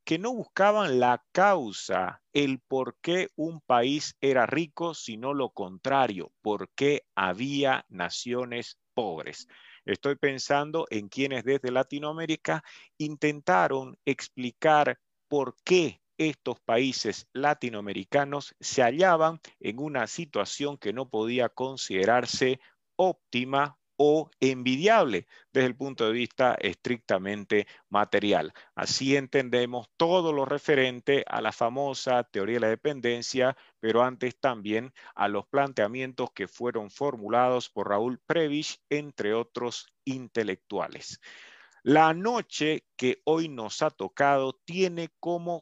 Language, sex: Spanish, male